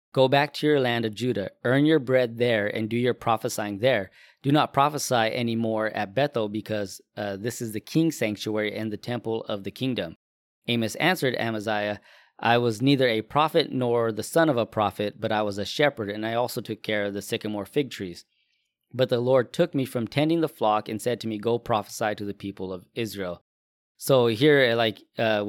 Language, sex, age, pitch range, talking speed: English, male, 20-39, 110-130 Hz, 210 wpm